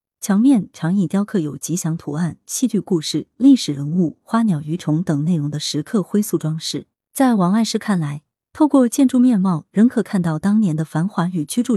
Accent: native